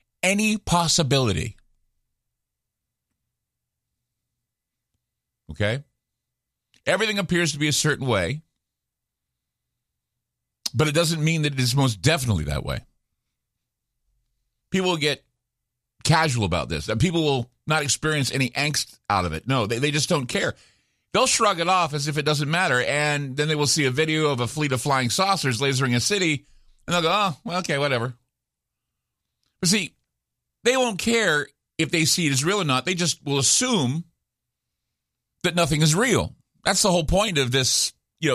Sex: male